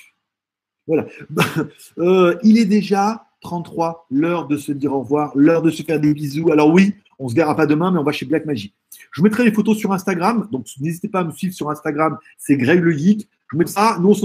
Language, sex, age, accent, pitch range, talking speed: French, male, 50-69, French, 145-205 Hz, 230 wpm